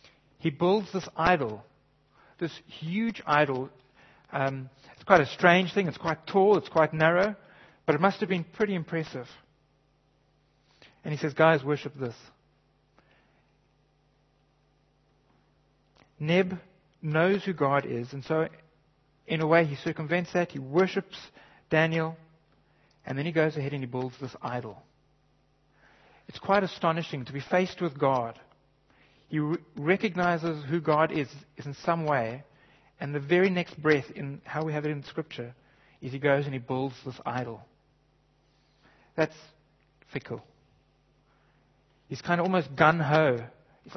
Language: English